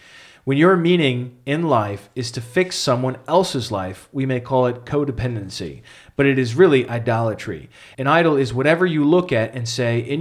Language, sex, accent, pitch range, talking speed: English, male, American, 120-150 Hz, 180 wpm